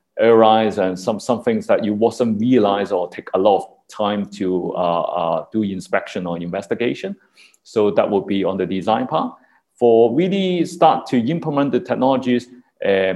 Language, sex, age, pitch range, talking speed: English, male, 30-49, 100-125 Hz, 170 wpm